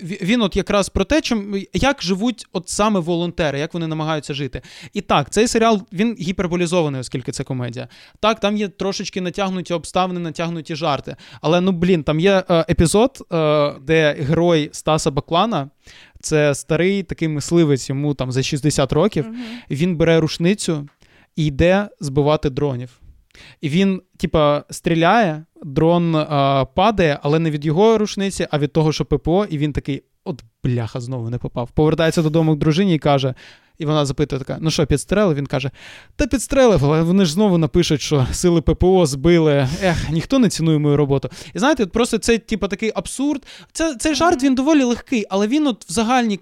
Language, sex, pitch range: Ukrainian, male, 150-195 Hz